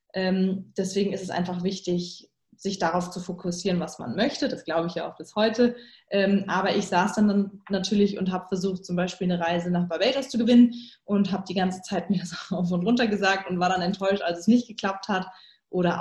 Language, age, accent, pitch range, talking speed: German, 20-39, German, 185-225 Hz, 220 wpm